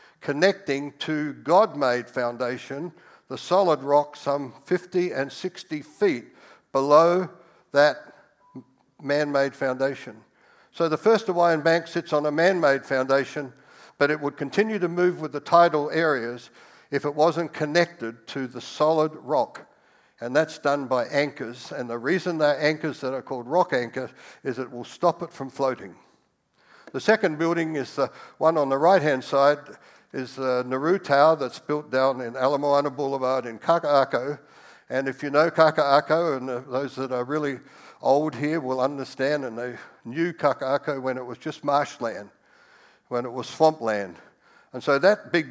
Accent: Australian